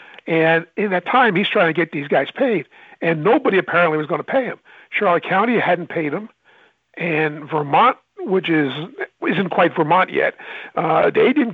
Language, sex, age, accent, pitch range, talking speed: English, male, 60-79, American, 160-205 Hz, 180 wpm